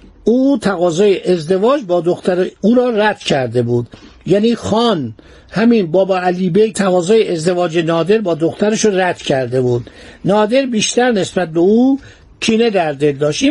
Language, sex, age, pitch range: Persian, male, 60-79, 180-230 Hz